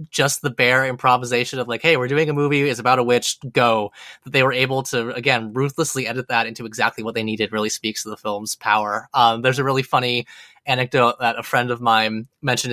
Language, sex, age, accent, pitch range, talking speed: English, male, 20-39, American, 115-140 Hz, 225 wpm